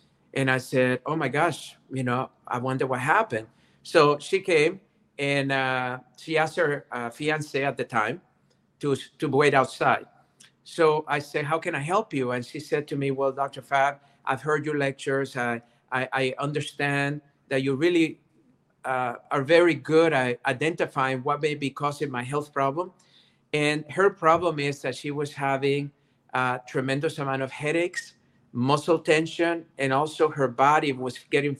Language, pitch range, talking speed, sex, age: English, 130-160 Hz, 170 wpm, male, 50-69